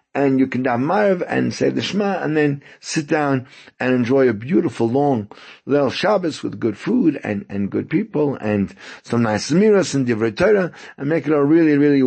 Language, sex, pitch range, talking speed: English, male, 120-150 Hz, 195 wpm